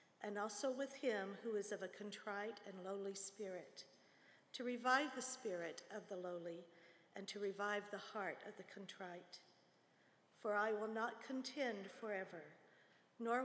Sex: female